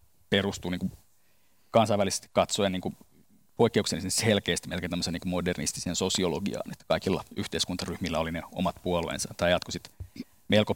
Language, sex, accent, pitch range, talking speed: Finnish, male, native, 90-100 Hz, 115 wpm